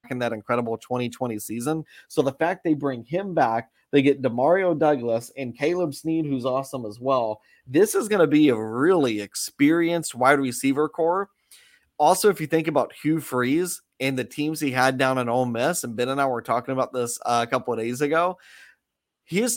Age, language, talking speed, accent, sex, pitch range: 30-49, English, 200 wpm, American, male, 120-160 Hz